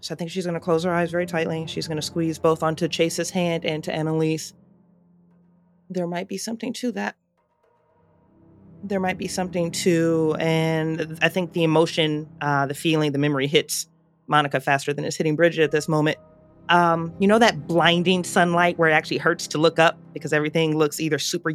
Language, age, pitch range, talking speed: English, 30-49, 160-185 Hz, 200 wpm